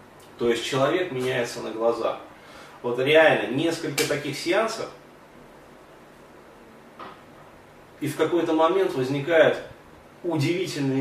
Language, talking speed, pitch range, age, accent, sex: Russian, 95 wpm, 125-170 Hz, 30-49, native, male